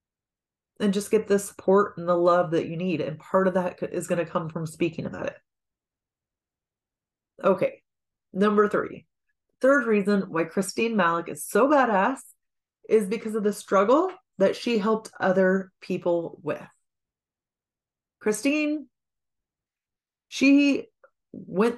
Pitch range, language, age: 180-230 Hz, English, 30-49